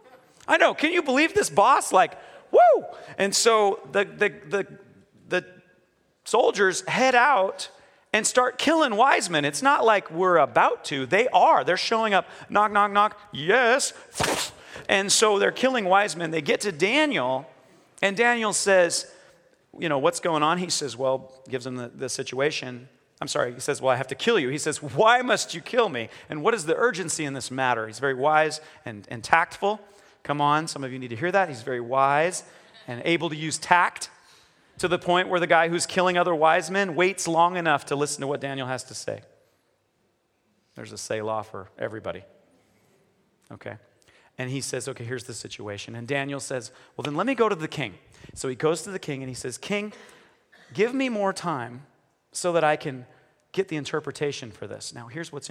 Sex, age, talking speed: male, 40-59, 200 wpm